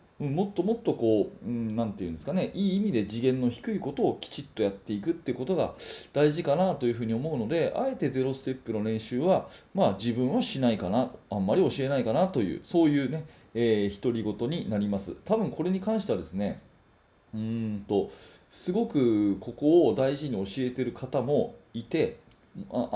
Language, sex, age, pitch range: Japanese, male, 30-49, 115-180 Hz